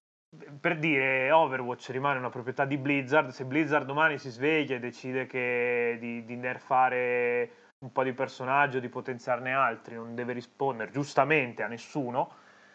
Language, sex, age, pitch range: Italian, male, 20-39, 120-135 Hz